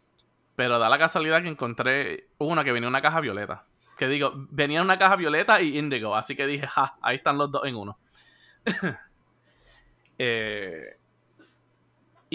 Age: 20-39